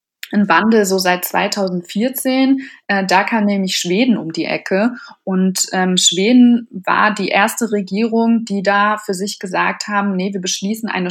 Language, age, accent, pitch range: German, 20-39, German, 190-235 Hz